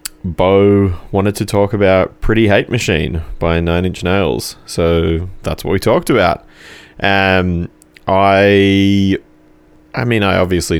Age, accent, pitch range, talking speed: 20-39, Australian, 85-100 Hz, 140 wpm